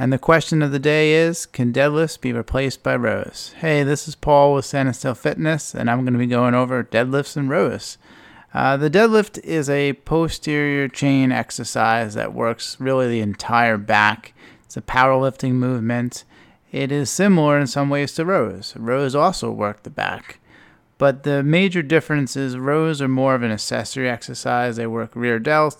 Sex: male